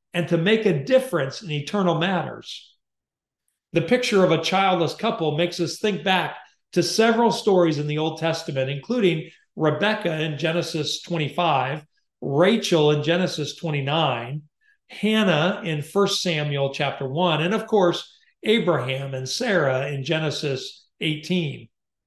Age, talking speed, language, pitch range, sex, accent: 40-59, 135 wpm, English, 150-195 Hz, male, American